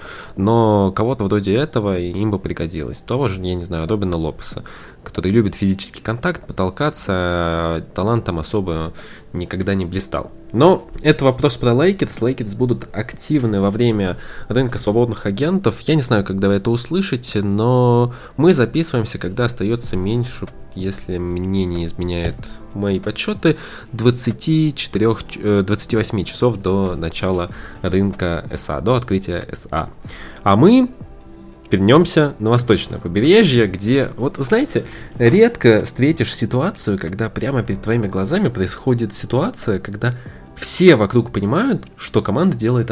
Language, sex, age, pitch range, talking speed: Russian, male, 20-39, 95-125 Hz, 130 wpm